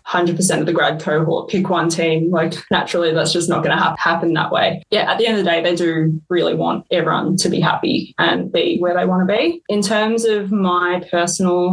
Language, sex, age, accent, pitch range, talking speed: English, female, 20-39, Australian, 170-185 Hz, 230 wpm